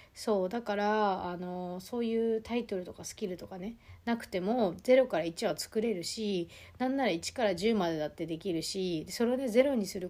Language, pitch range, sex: Japanese, 170-220 Hz, female